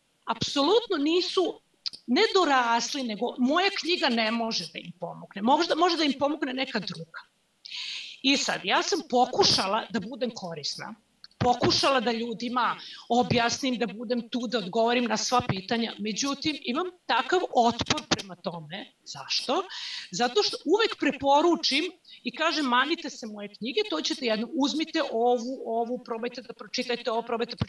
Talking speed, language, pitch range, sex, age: 145 wpm, Croatian, 225-315 Hz, female, 40-59